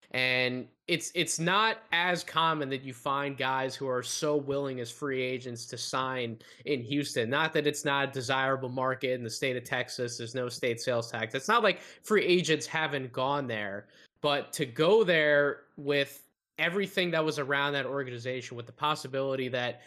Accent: American